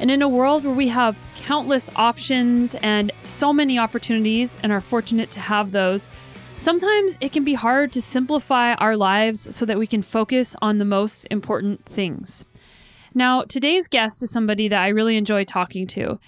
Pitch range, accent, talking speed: 215-265 Hz, American, 180 wpm